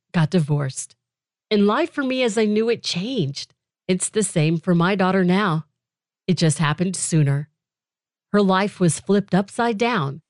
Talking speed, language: 165 wpm, English